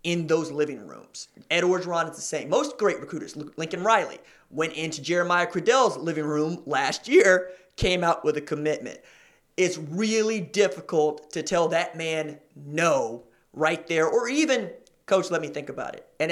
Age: 30-49